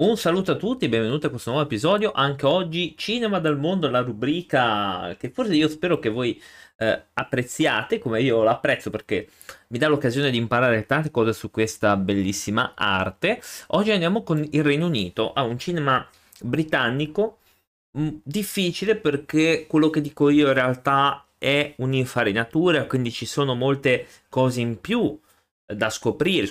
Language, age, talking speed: Italian, 30-49, 155 wpm